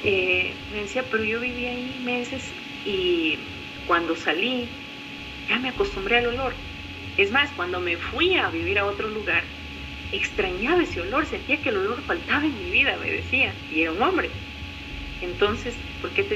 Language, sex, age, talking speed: Spanish, female, 40-59, 170 wpm